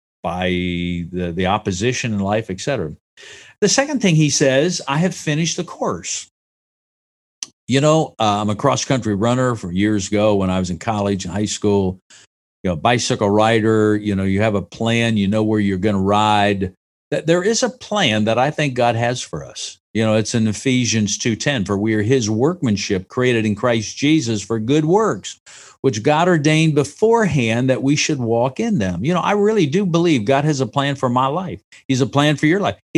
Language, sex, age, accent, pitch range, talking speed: English, male, 50-69, American, 105-155 Hz, 205 wpm